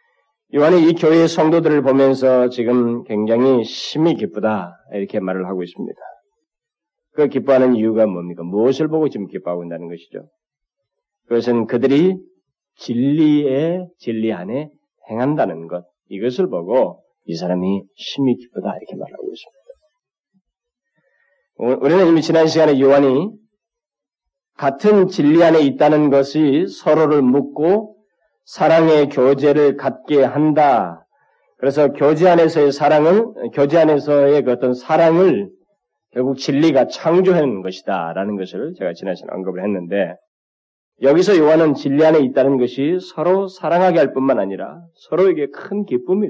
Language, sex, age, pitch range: Korean, male, 40-59, 120-170 Hz